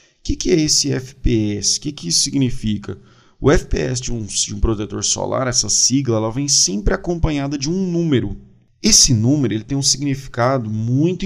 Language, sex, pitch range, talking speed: Portuguese, male, 115-150 Hz, 165 wpm